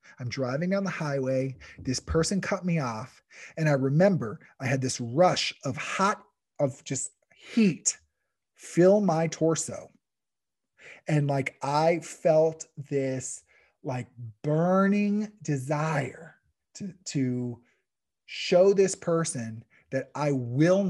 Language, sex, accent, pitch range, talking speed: English, male, American, 130-180 Hz, 120 wpm